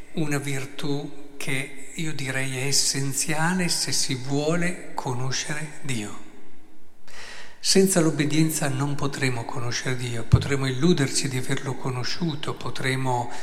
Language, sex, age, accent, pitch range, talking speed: Italian, male, 50-69, native, 125-160 Hz, 105 wpm